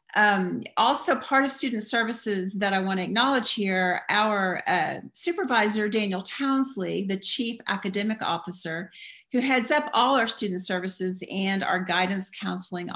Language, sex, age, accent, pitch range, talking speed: English, female, 40-59, American, 190-245 Hz, 150 wpm